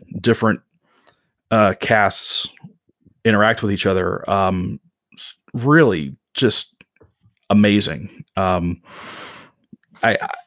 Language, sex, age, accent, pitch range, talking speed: English, male, 30-49, American, 100-115 Hz, 80 wpm